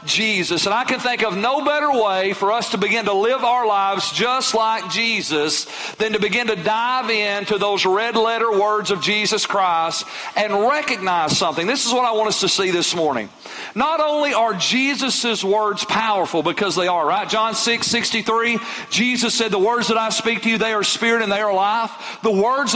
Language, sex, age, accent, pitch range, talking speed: English, male, 40-59, American, 205-245 Hz, 205 wpm